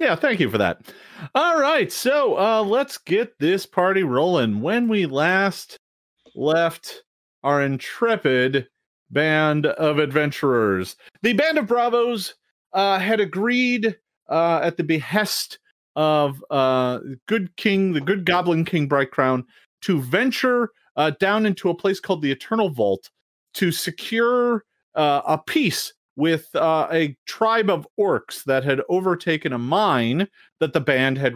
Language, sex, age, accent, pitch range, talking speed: English, male, 40-59, American, 135-205 Hz, 145 wpm